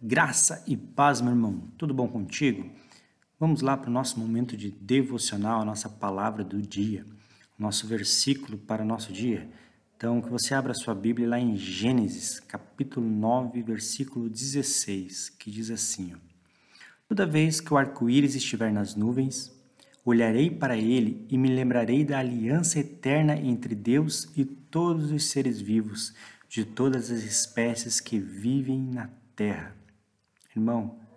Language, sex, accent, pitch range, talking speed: Portuguese, male, Brazilian, 110-135 Hz, 150 wpm